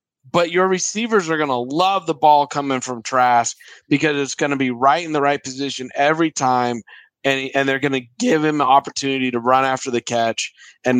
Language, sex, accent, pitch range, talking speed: English, male, American, 130-160 Hz, 215 wpm